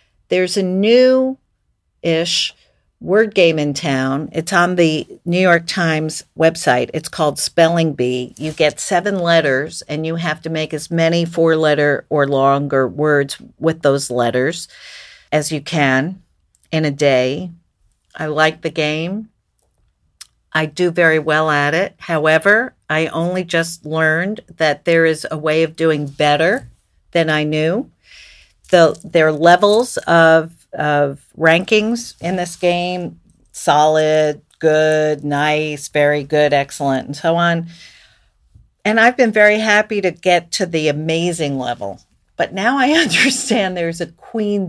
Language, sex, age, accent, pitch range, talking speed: English, female, 50-69, American, 145-175 Hz, 140 wpm